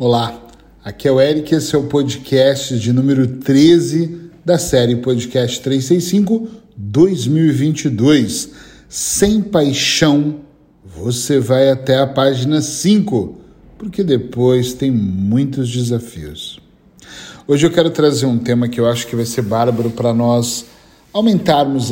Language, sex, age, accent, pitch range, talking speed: Portuguese, male, 40-59, Brazilian, 120-155 Hz, 125 wpm